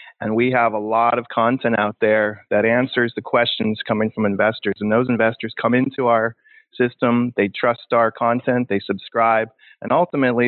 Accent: American